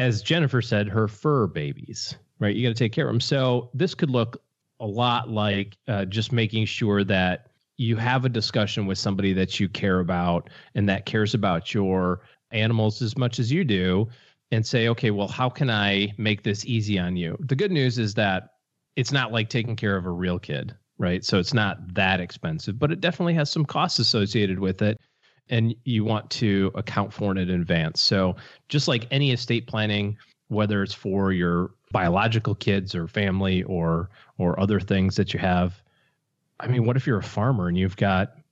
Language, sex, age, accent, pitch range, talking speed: English, male, 30-49, American, 95-125 Hz, 200 wpm